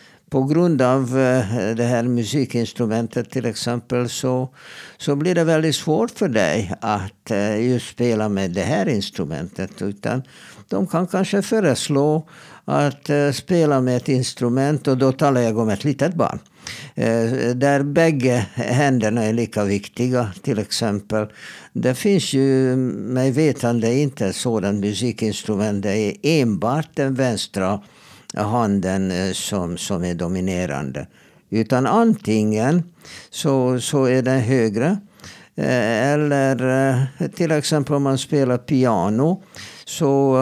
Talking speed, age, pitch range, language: 115 wpm, 60-79, 115-145 Hz, Swedish